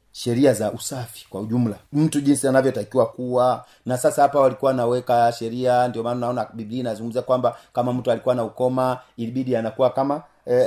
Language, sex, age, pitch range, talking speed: Swahili, male, 40-59, 120-145 Hz, 170 wpm